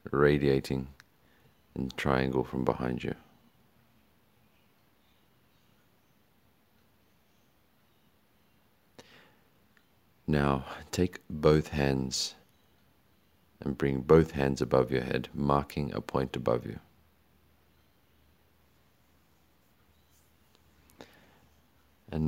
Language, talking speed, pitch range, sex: English, 60 wpm, 65-80 Hz, male